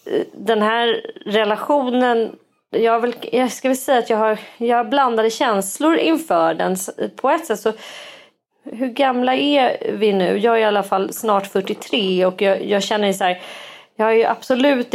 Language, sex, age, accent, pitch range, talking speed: Swedish, female, 30-49, native, 175-230 Hz, 175 wpm